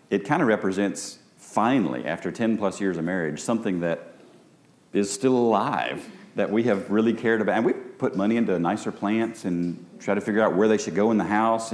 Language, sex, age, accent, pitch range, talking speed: English, male, 40-59, American, 95-120 Hz, 210 wpm